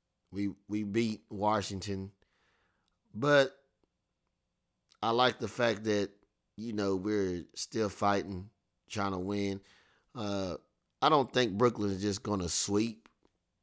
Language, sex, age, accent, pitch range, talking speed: English, male, 30-49, American, 90-105 Hz, 125 wpm